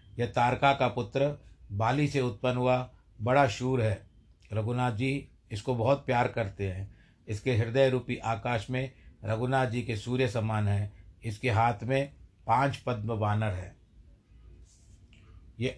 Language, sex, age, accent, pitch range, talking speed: Hindi, male, 50-69, native, 105-130 Hz, 140 wpm